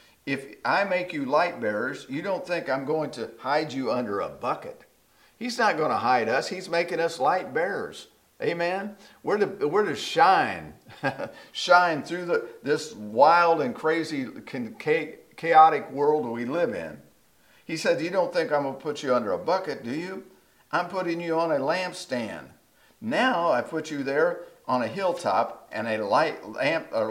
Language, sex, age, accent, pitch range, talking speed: English, male, 50-69, American, 150-205 Hz, 180 wpm